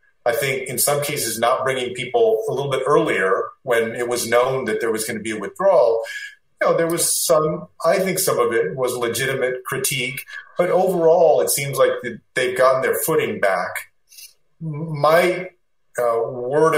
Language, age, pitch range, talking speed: English, 40-59, 120-170 Hz, 180 wpm